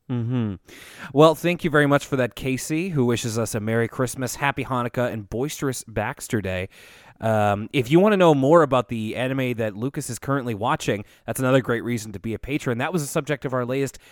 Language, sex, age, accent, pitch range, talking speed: English, male, 20-39, American, 115-145 Hz, 215 wpm